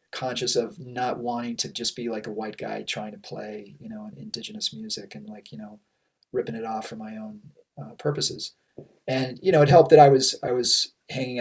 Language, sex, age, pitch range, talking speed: English, male, 30-49, 115-140 Hz, 220 wpm